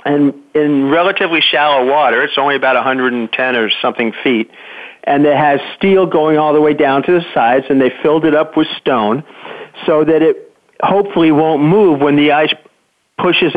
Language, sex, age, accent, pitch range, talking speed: English, male, 50-69, American, 135-180 Hz, 180 wpm